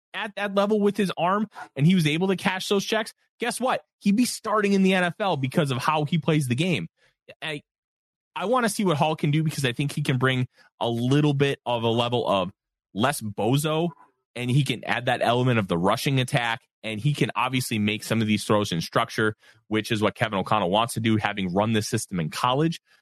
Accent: American